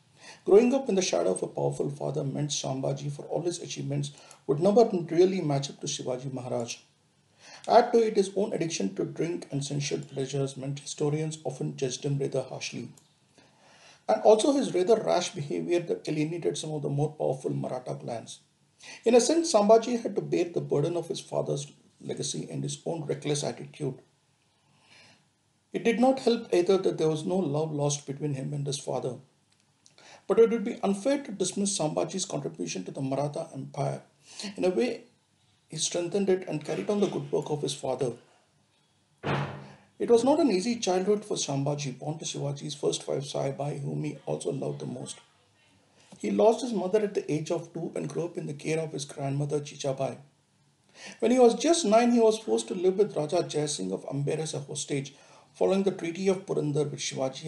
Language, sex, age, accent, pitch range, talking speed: English, male, 50-69, Indian, 140-200 Hz, 190 wpm